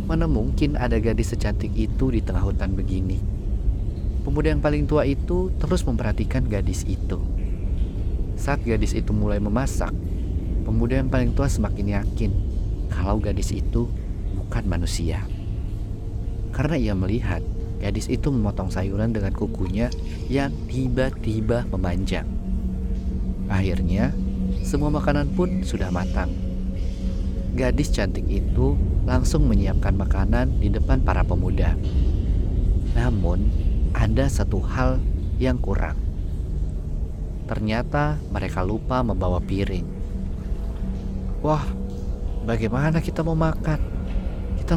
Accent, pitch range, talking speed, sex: native, 85-105 Hz, 105 wpm, male